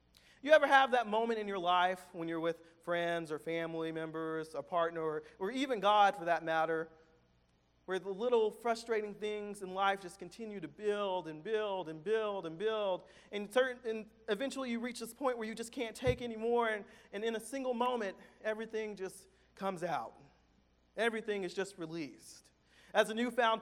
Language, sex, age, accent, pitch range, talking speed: English, male, 40-59, American, 155-225 Hz, 180 wpm